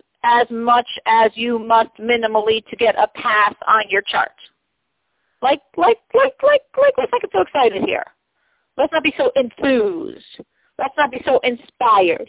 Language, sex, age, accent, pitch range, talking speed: English, female, 50-69, American, 235-355 Hz, 165 wpm